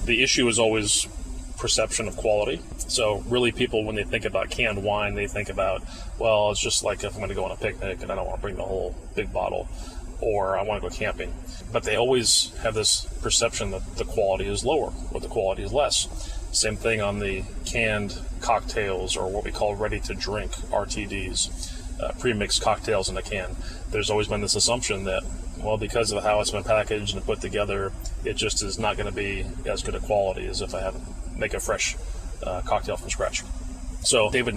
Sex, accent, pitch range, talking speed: male, American, 95-110 Hz, 210 wpm